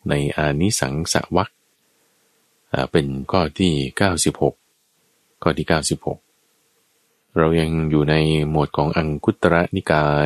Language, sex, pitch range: Thai, male, 75-110 Hz